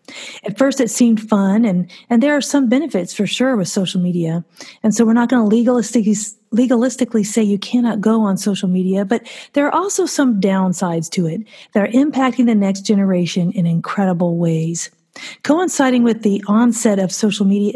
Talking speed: 180 wpm